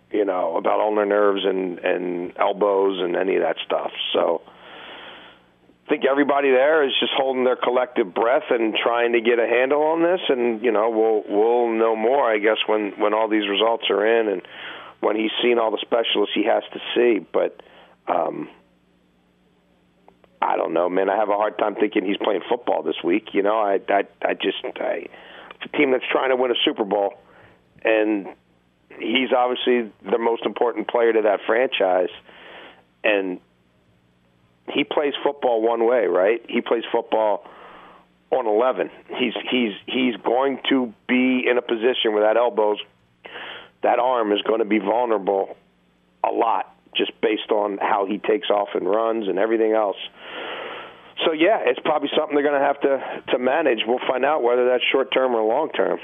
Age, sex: 50-69, male